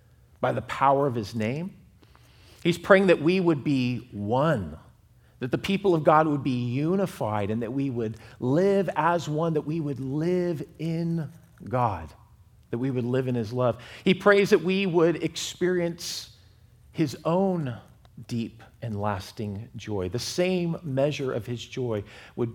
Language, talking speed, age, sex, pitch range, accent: English, 160 wpm, 40-59, male, 115-165 Hz, American